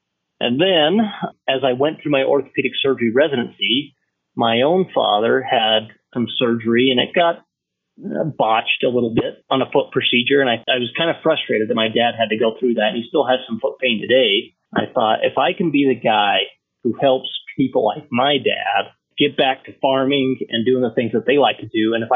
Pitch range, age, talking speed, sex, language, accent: 115-140 Hz, 30-49, 210 wpm, male, English, American